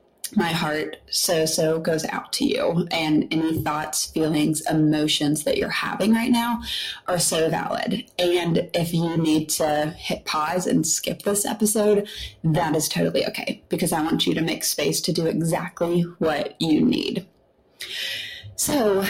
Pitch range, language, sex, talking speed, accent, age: 160-200 Hz, English, female, 155 wpm, American, 20-39